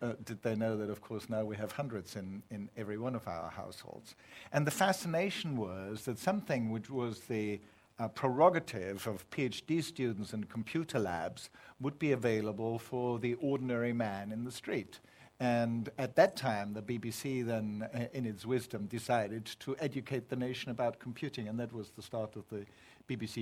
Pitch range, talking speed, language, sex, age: 110-140 Hz, 180 wpm, English, male, 60-79